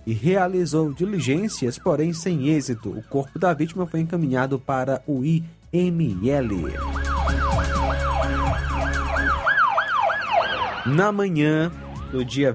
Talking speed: 90 wpm